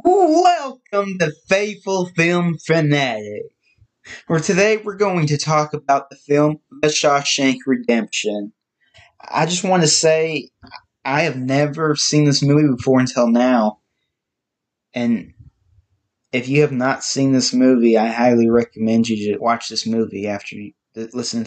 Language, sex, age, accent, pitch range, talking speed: English, male, 20-39, American, 120-150 Hz, 135 wpm